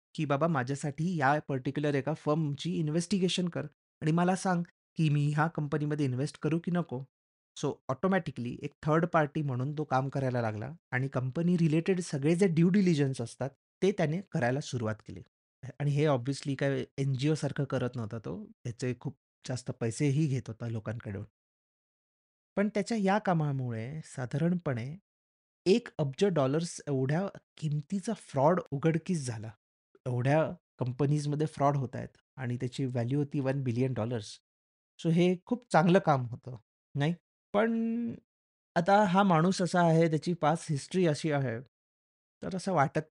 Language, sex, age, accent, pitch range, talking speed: Marathi, male, 30-49, native, 130-165 Hz, 135 wpm